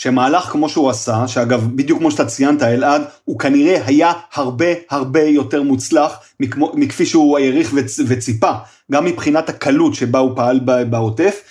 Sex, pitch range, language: male, 135-200 Hz, Hebrew